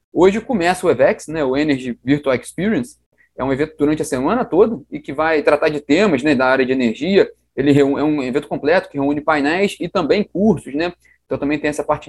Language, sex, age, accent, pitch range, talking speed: Portuguese, male, 20-39, Brazilian, 140-195 Hz, 225 wpm